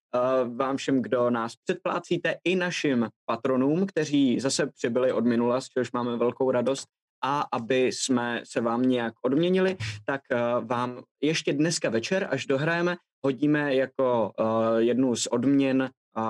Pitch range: 120-155 Hz